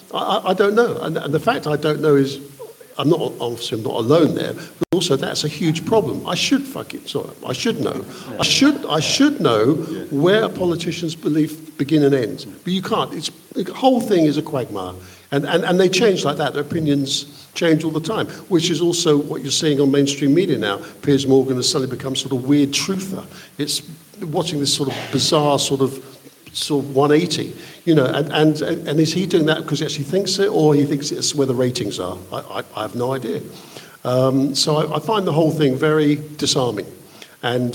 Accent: British